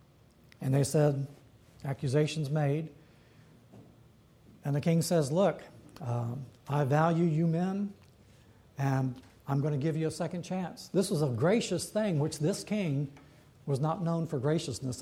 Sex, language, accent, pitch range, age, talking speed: male, English, American, 135-165 Hz, 60-79, 150 wpm